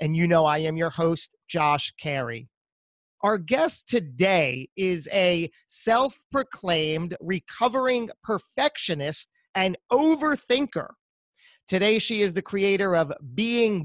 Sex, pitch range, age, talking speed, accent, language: male, 155-220 Hz, 30-49, 115 wpm, American, English